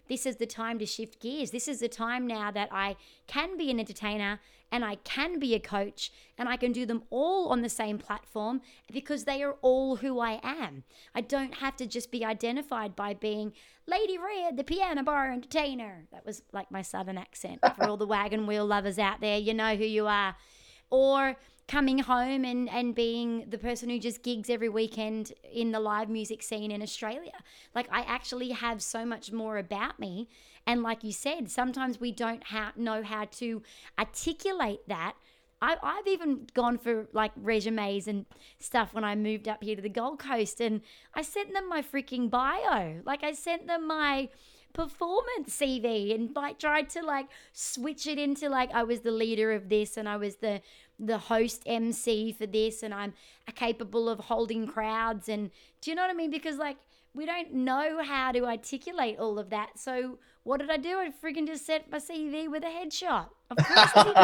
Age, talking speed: 30-49, 200 wpm